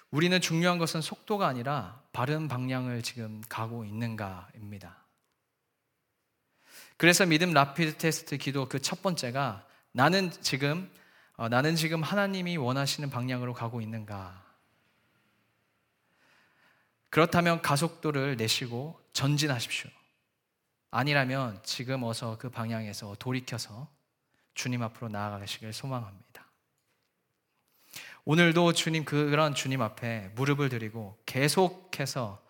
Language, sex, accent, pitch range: Korean, male, native, 120-170 Hz